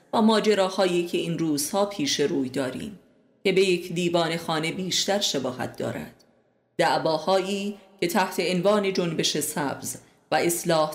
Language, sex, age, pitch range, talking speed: Persian, female, 30-49, 165-200 Hz, 130 wpm